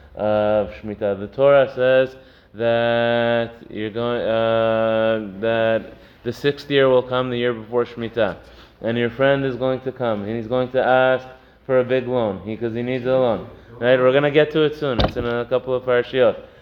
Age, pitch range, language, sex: 20-39, 120-150 Hz, English, male